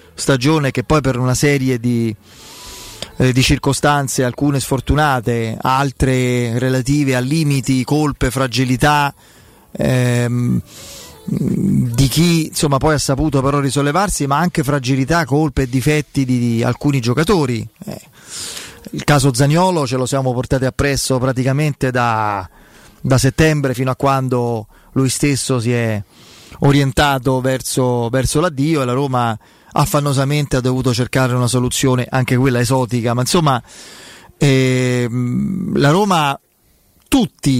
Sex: male